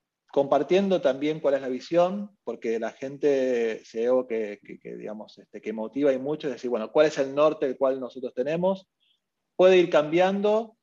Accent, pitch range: Argentinian, 120-155 Hz